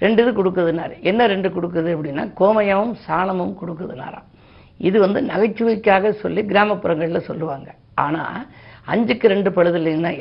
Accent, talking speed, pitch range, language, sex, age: native, 120 wpm, 170-210 Hz, Tamil, female, 50-69